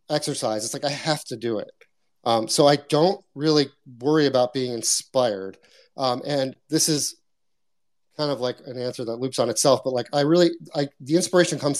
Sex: male